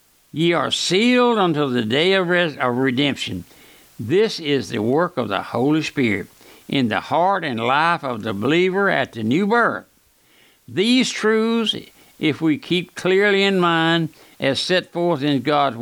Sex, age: male, 60-79